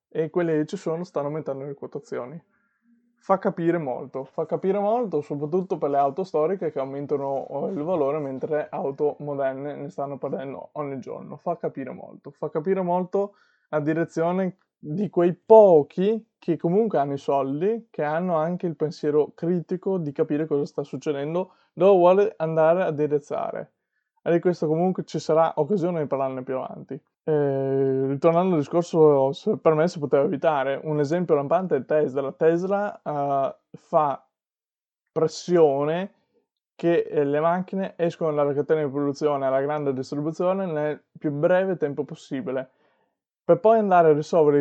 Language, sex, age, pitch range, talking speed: Italian, male, 20-39, 145-180 Hz, 155 wpm